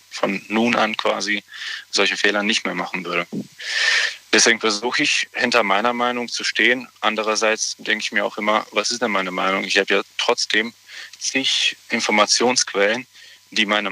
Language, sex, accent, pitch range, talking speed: German, male, German, 100-115 Hz, 160 wpm